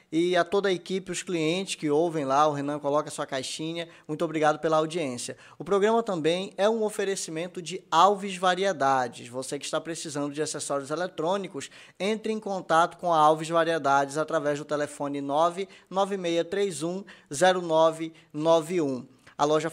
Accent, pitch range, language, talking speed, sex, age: Brazilian, 150-185 Hz, Portuguese, 145 wpm, male, 20-39